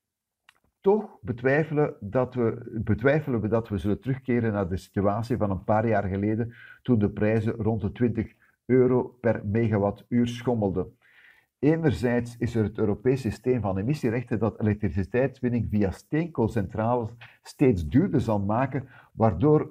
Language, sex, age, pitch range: Dutch, male, 50-69, 110-130 Hz